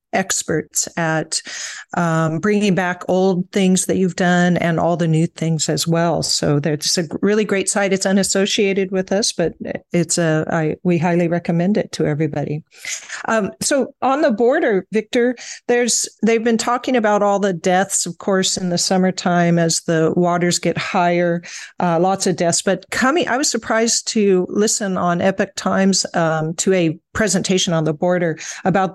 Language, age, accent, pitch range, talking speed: English, 50-69, American, 175-205 Hz, 170 wpm